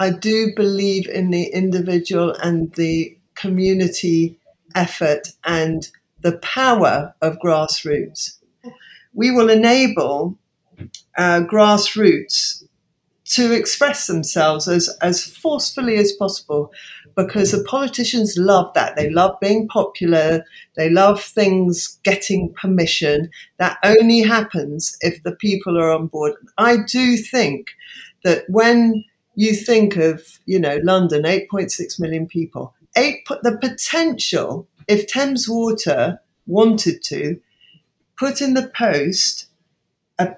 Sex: female